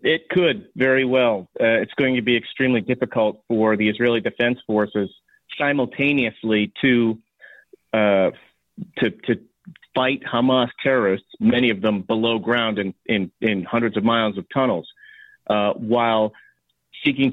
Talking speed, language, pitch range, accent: 140 wpm, English, 115-135 Hz, American